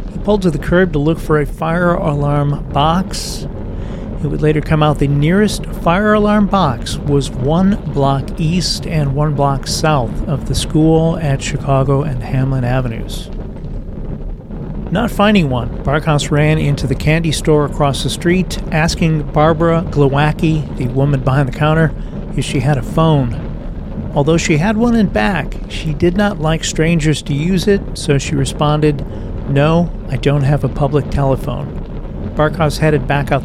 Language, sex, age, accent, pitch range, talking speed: English, male, 40-59, American, 140-165 Hz, 160 wpm